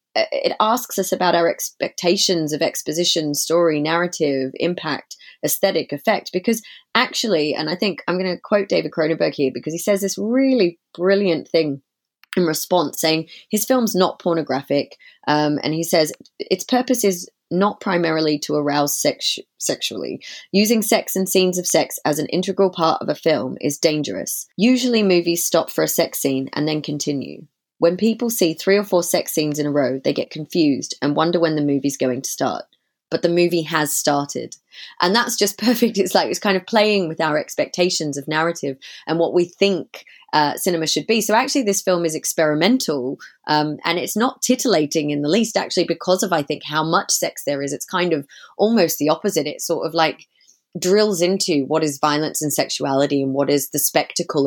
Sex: female